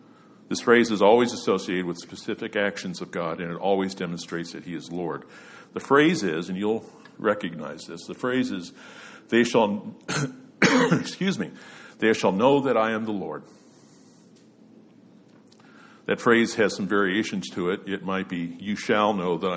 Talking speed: 165 wpm